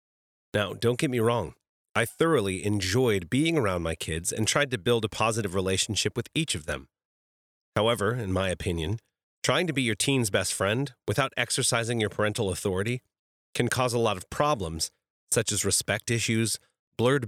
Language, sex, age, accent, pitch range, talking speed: English, male, 30-49, American, 95-120 Hz, 175 wpm